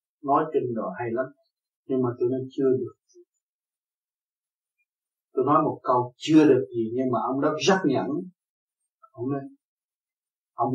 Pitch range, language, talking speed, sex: 130-190 Hz, Vietnamese, 150 wpm, male